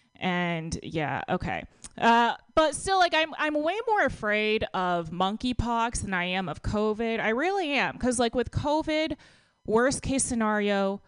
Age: 20-39